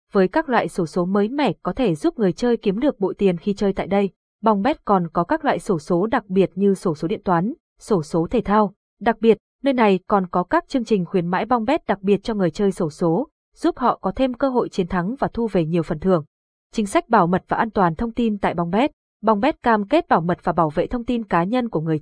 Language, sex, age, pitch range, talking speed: Vietnamese, female, 20-39, 185-235 Hz, 260 wpm